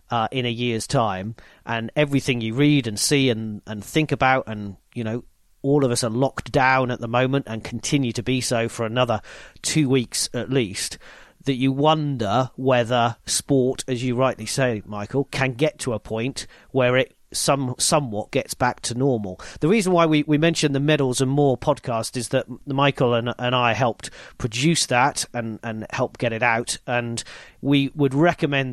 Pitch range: 120-145 Hz